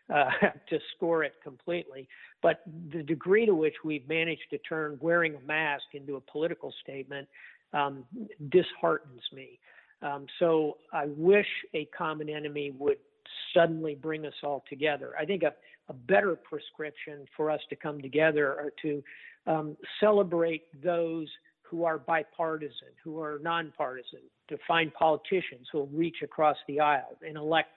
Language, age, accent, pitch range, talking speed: English, 50-69, American, 145-170 Hz, 150 wpm